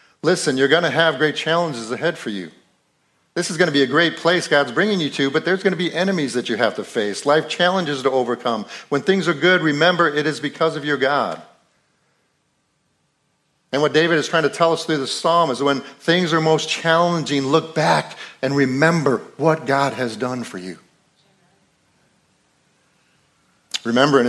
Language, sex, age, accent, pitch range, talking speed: English, male, 50-69, American, 125-155 Hz, 190 wpm